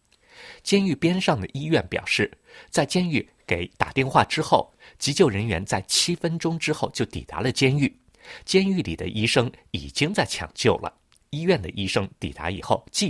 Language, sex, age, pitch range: Chinese, male, 50-69, 95-150 Hz